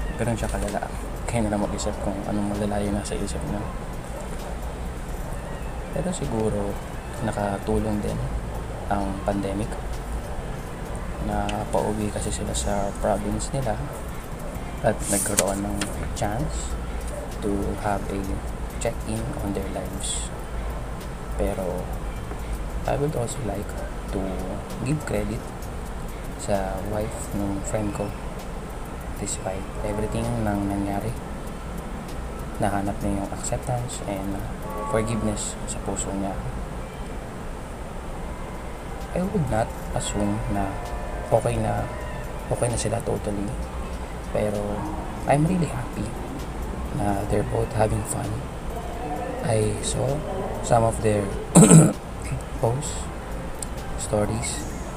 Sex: male